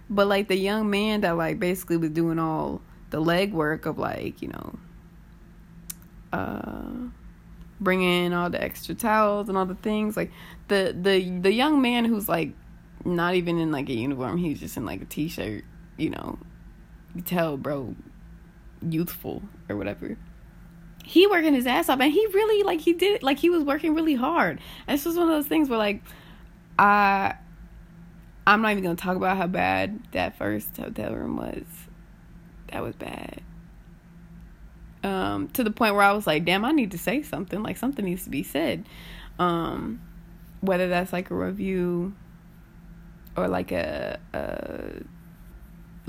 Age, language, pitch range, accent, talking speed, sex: 20-39, English, 170-205 Hz, American, 170 wpm, female